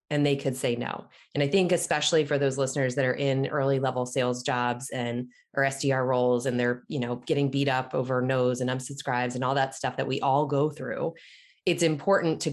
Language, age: English, 20-39